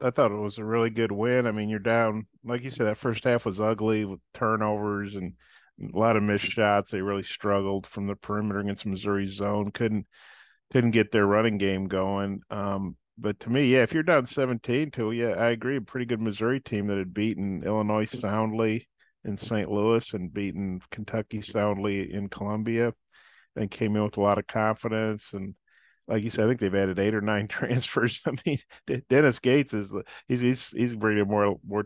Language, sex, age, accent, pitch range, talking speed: English, male, 50-69, American, 100-115 Hz, 200 wpm